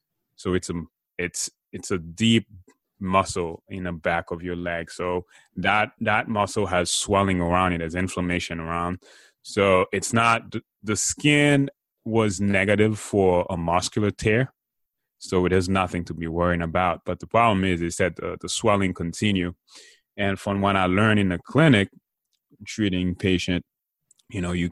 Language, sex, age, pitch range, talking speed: English, male, 20-39, 85-100 Hz, 165 wpm